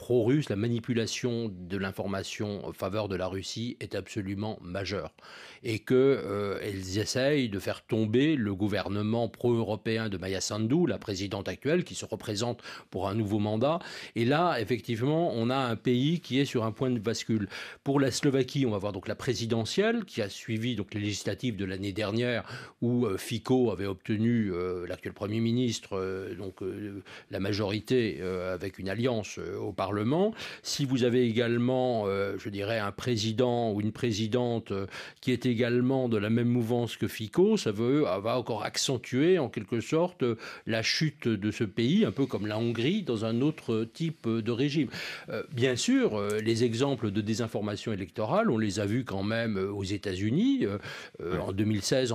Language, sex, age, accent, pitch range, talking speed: French, male, 40-59, French, 105-125 Hz, 175 wpm